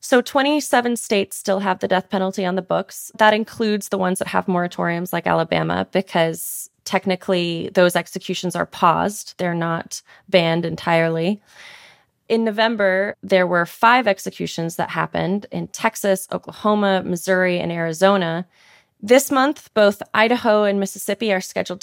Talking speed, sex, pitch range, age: 145 wpm, female, 180-215 Hz, 20-39